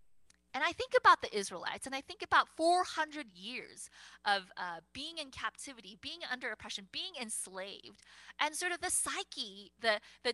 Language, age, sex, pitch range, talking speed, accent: English, 20-39, female, 215-310 Hz, 170 wpm, American